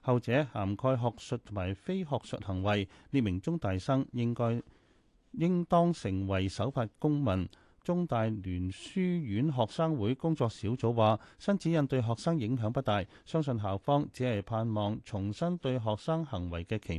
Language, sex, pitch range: Chinese, male, 100-135 Hz